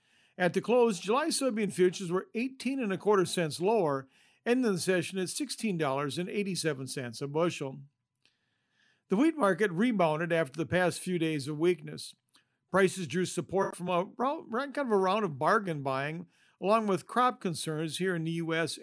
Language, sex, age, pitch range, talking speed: English, male, 50-69, 155-205 Hz, 165 wpm